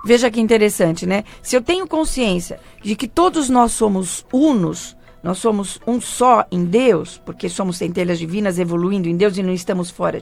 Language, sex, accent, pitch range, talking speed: Portuguese, female, Brazilian, 210-255 Hz, 180 wpm